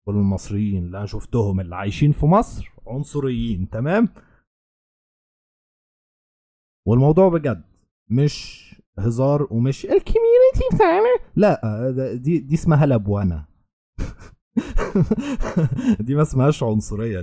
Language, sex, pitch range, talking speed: Arabic, male, 95-140 Hz, 95 wpm